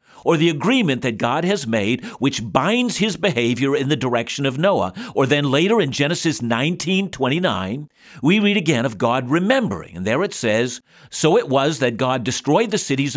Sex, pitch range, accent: male, 125-175 Hz, American